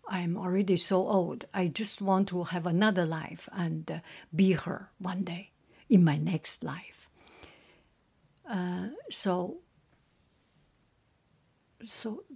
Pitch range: 185-230 Hz